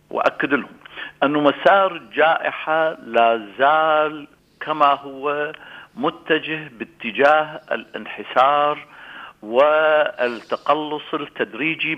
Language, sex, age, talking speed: English, male, 50-69, 70 wpm